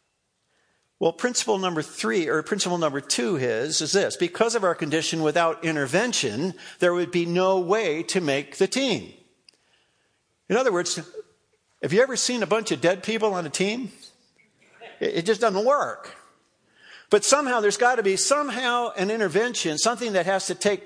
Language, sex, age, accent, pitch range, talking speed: English, male, 50-69, American, 160-215 Hz, 170 wpm